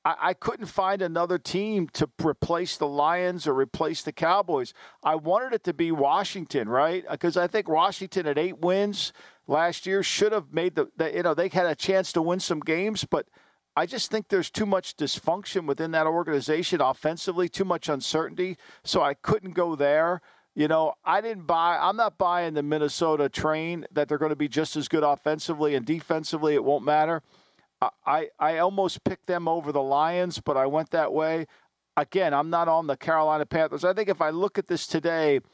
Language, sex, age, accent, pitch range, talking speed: English, male, 50-69, American, 150-185 Hz, 200 wpm